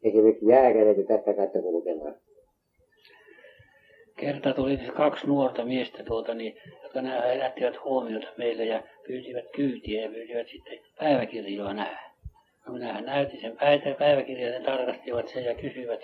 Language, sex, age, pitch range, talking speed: Finnish, male, 60-79, 115-145 Hz, 135 wpm